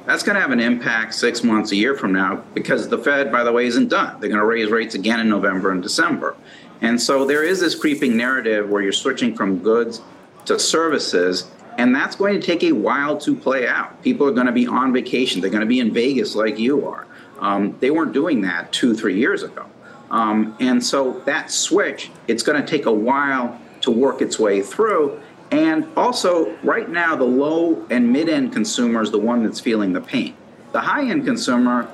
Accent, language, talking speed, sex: American, English, 210 wpm, male